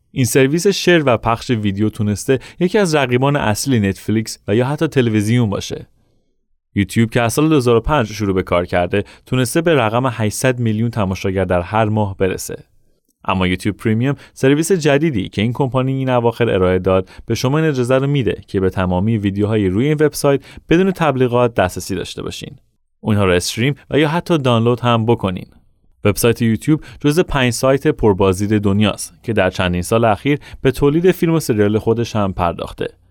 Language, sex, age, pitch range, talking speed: Persian, male, 30-49, 100-140 Hz, 170 wpm